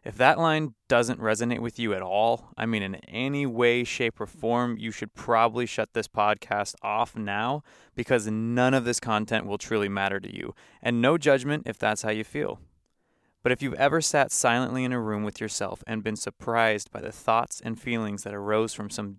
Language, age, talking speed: English, 20-39, 205 wpm